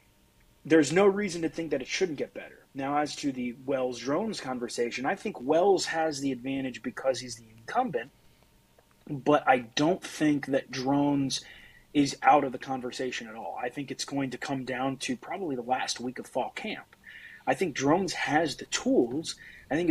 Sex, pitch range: male, 130-155 Hz